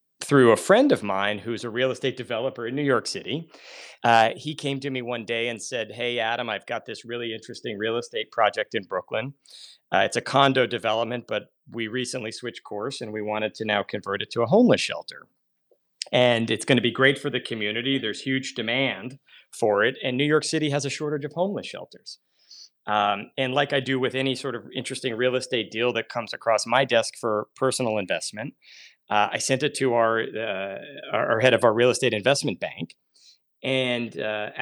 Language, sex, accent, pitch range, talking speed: English, male, American, 110-130 Hz, 205 wpm